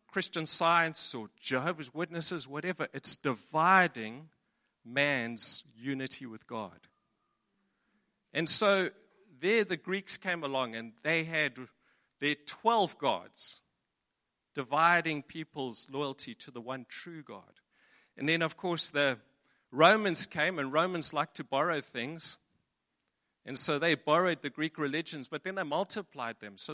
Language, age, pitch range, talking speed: English, 50-69, 135-185 Hz, 130 wpm